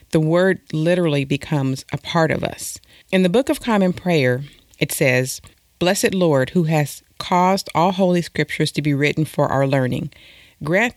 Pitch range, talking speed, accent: 135-170 Hz, 170 wpm, American